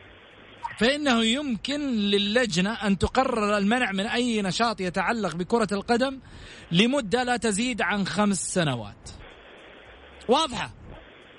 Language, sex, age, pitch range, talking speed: Arabic, male, 40-59, 190-275 Hz, 100 wpm